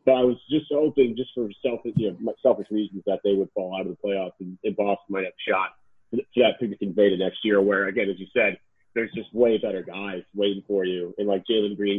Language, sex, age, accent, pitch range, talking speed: English, male, 30-49, American, 100-115 Hz, 245 wpm